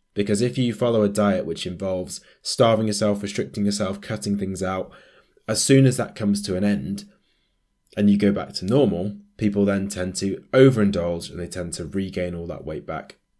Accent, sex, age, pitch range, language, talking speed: British, male, 20-39, 95-110 Hz, English, 195 wpm